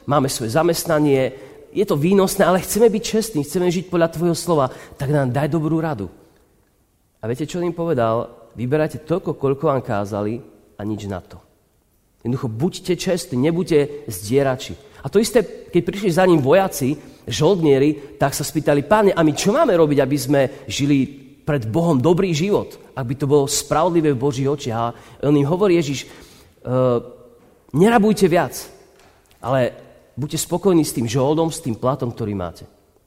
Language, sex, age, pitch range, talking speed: Slovak, male, 40-59, 120-170 Hz, 165 wpm